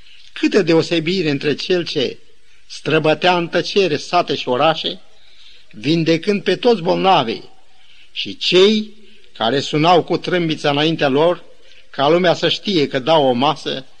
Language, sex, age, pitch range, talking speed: Romanian, male, 50-69, 145-200 Hz, 130 wpm